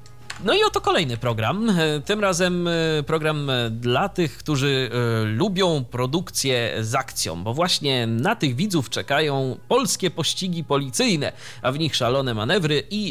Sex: male